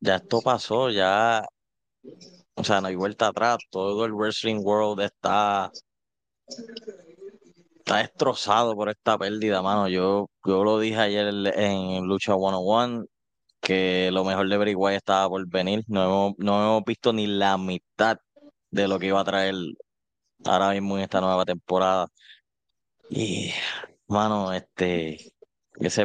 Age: 20-39